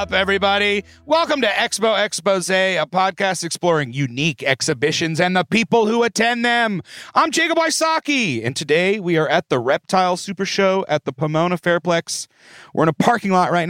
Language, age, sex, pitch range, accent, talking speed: English, 30-49, male, 130-190 Hz, American, 170 wpm